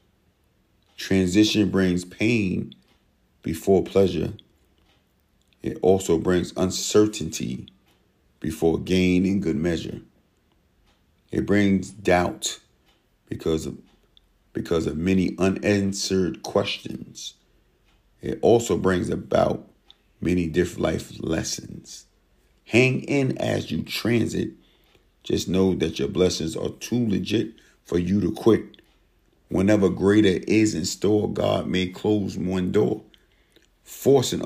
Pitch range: 90-105 Hz